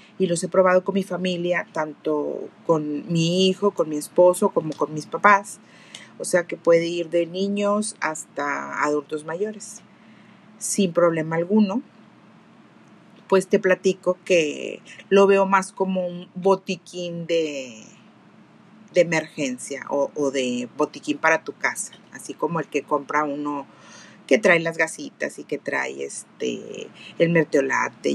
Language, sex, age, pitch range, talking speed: Spanish, female, 40-59, 165-205 Hz, 145 wpm